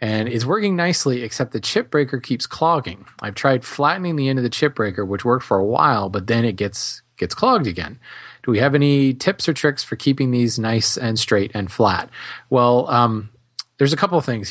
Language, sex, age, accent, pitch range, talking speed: English, male, 30-49, American, 110-135 Hz, 220 wpm